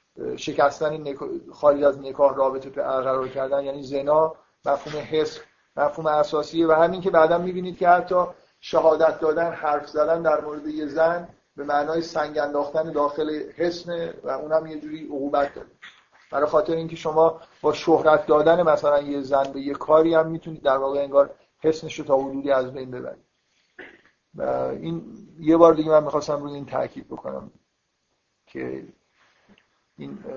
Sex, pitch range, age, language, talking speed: male, 140-165 Hz, 50-69, Persian, 155 wpm